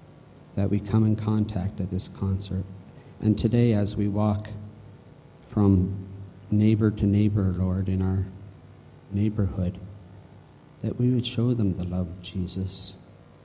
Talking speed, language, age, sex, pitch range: 135 wpm, English, 50-69, male, 90-105 Hz